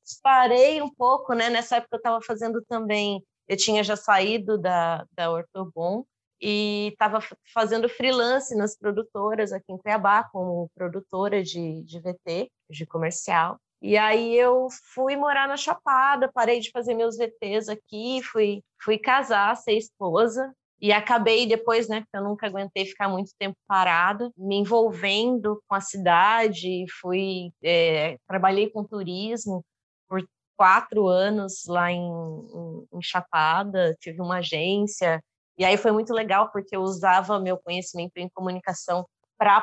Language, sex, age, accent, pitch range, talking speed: Portuguese, female, 20-39, Brazilian, 180-230 Hz, 150 wpm